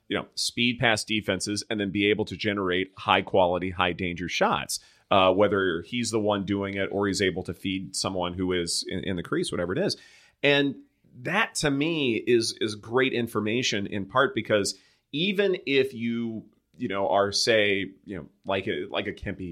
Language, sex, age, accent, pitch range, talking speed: English, male, 30-49, American, 95-120 Hz, 190 wpm